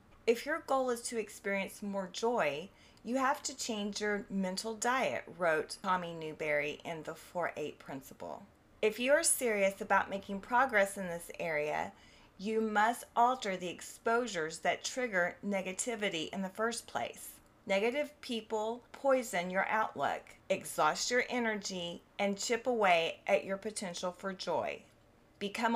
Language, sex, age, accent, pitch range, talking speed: English, female, 30-49, American, 185-240 Hz, 140 wpm